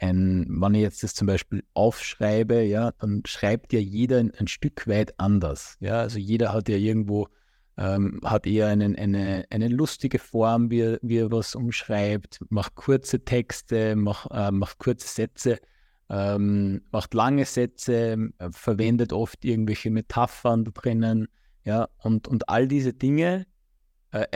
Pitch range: 105-125 Hz